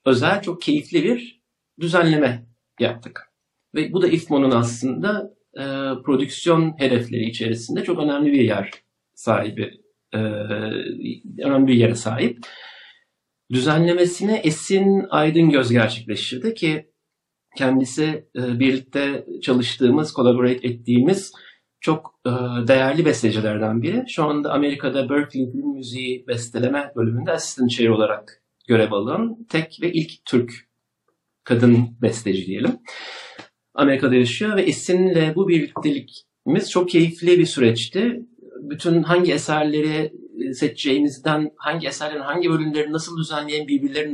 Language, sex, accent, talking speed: Turkish, male, native, 115 wpm